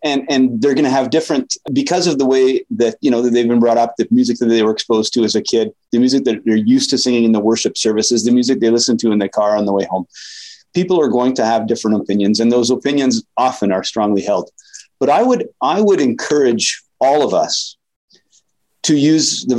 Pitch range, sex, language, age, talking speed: 115-160 Hz, male, English, 30-49, 240 wpm